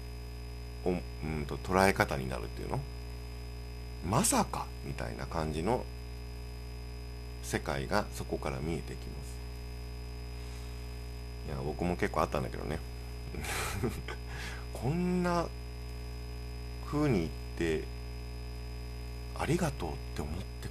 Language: Japanese